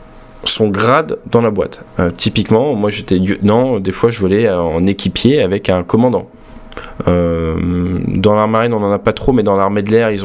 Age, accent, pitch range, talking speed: 20-39, French, 95-125 Hz, 200 wpm